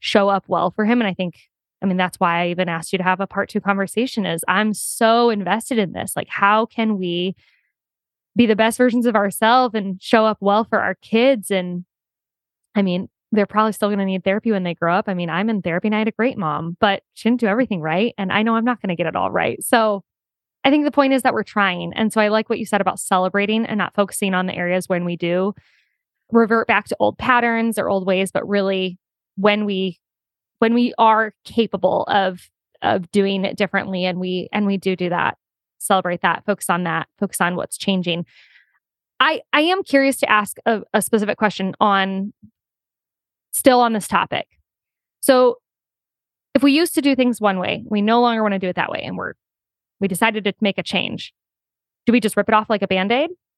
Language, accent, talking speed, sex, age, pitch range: English, American, 225 wpm, female, 10-29, 185-225 Hz